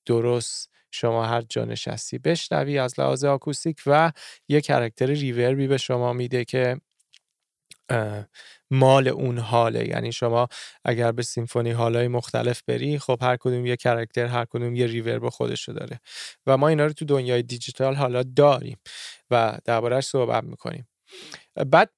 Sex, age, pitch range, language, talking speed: male, 30-49, 120-140 Hz, Persian, 145 wpm